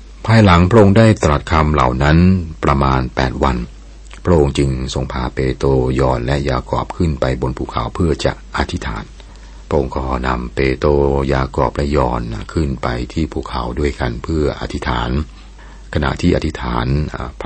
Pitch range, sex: 65-75 Hz, male